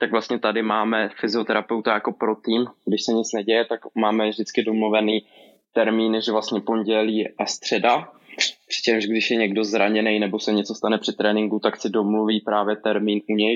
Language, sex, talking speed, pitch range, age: Czech, male, 175 wpm, 110-125 Hz, 20-39